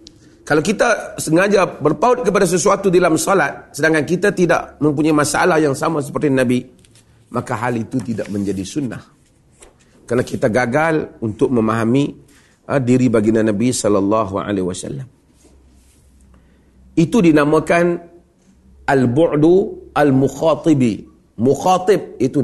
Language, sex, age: Malay, male, 40-59